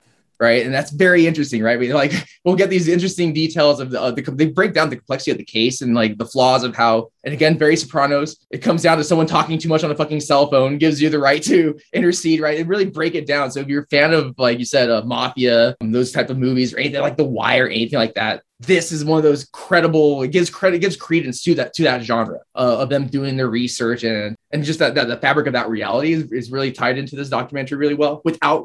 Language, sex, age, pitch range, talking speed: English, male, 20-39, 125-155 Hz, 260 wpm